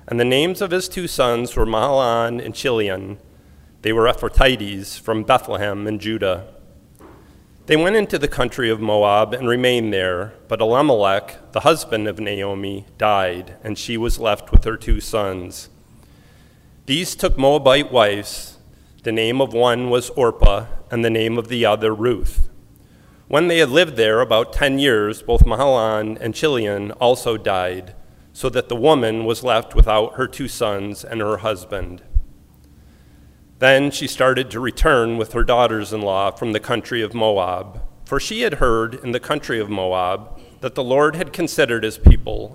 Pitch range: 100-120 Hz